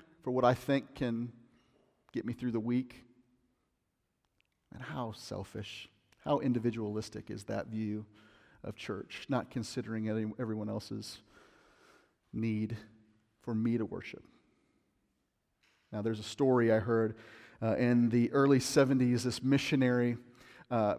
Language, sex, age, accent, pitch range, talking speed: English, male, 40-59, American, 115-140 Hz, 125 wpm